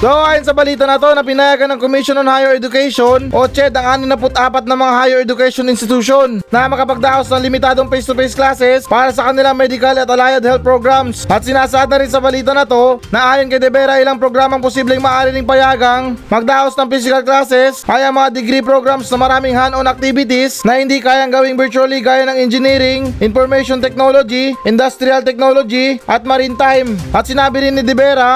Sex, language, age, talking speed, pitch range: male, Filipino, 20-39, 180 wpm, 255-270 Hz